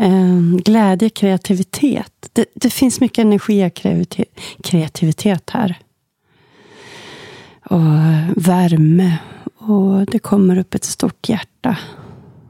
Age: 40-59